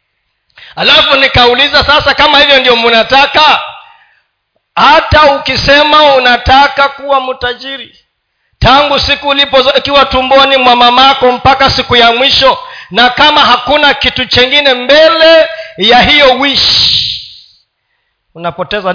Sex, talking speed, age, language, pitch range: male, 100 wpm, 40-59, Swahili, 185-280 Hz